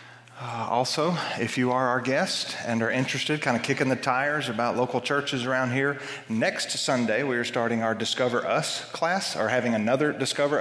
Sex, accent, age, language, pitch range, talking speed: male, American, 40-59, English, 115-140 Hz, 185 wpm